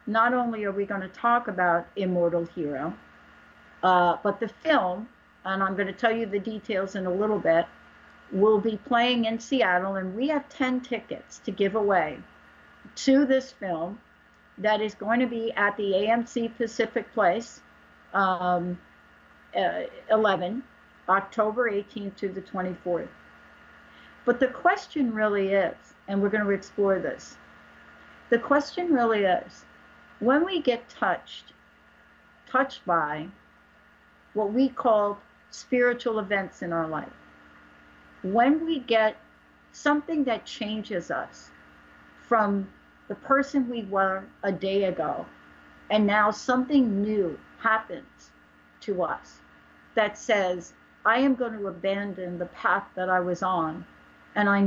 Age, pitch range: 60-79, 185-235 Hz